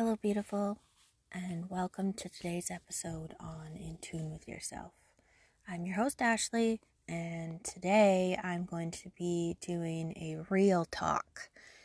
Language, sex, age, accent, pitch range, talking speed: English, female, 30-49, American, 170-205 Hz, 130 wpm